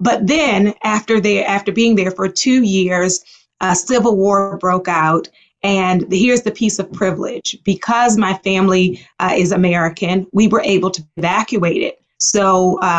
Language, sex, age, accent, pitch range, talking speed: English, female, 20-39, American, 185-225 Hz, 165 wpm